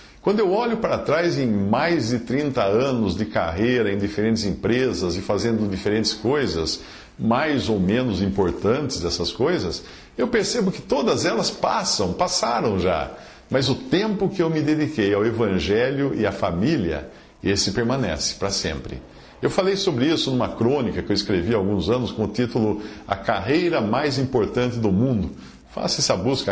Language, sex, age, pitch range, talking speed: English, male, 50-69, 100-130 Hz, 165 wpm